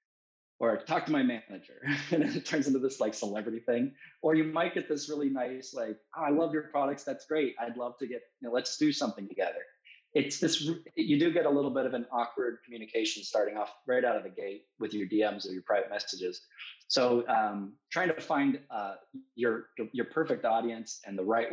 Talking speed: 210 wpm